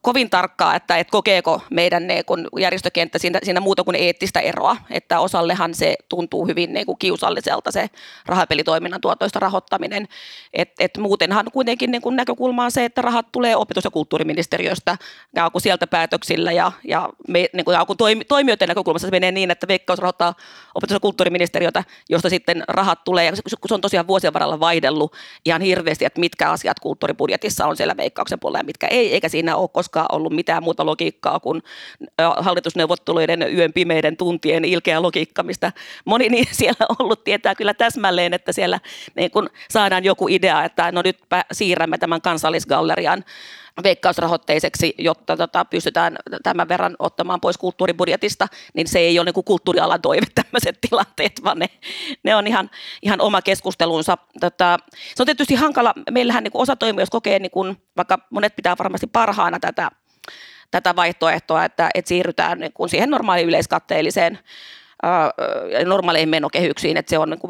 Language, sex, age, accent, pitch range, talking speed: Finnish, female, 30-49, native, 170-210 Hz, 155 wpm